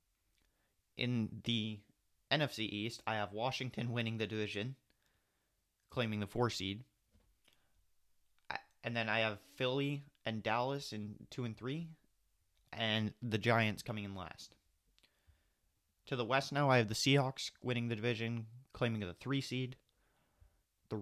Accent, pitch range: American, 100-130 Hz